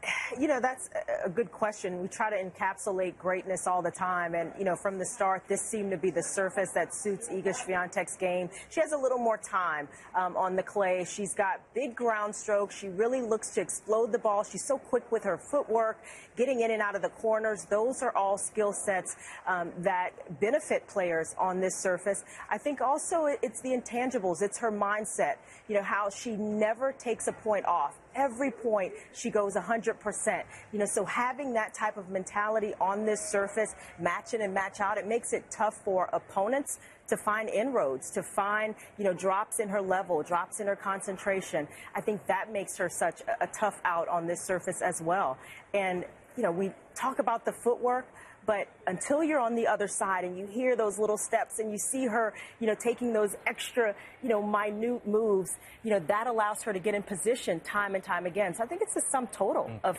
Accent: American